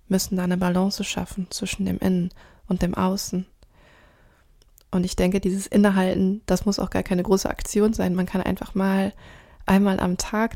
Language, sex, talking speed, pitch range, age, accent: German, female, 175 wpm, 180-200 Hz, 20-39, German